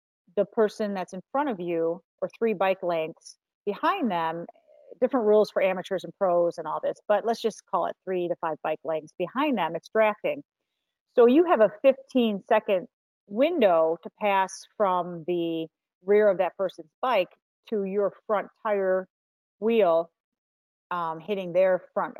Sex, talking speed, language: female, 160 wpm, English